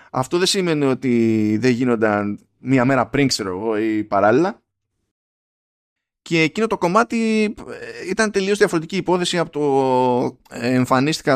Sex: male